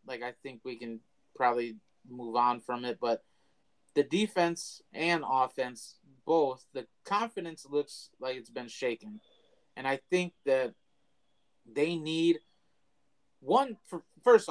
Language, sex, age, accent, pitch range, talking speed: English, male, 30-49, American, 135-180 Hz, 130 wpm